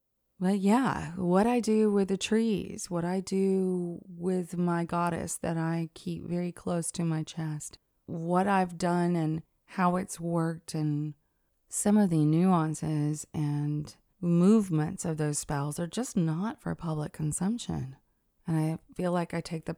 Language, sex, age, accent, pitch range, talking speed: English, female, 30-49, American, 155-195 Hz, 160 wpm